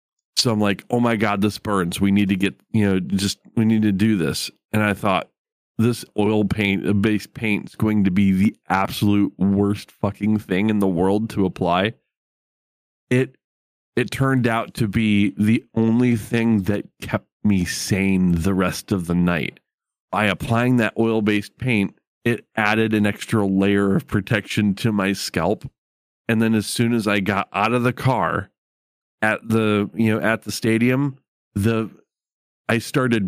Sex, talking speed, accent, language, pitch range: male, 170 wpm, American, English, 95-115 Hz